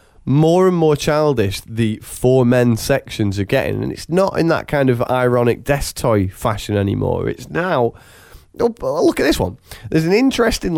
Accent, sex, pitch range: British, male, 105-145 Hz